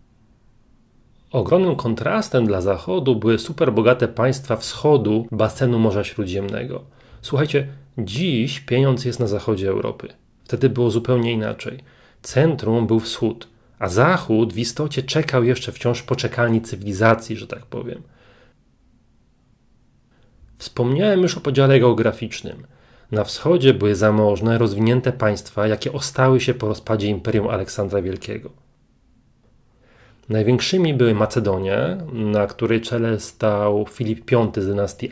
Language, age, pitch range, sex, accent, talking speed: Polish, 30-49, 110-130 Hz, male, native, 115 wpm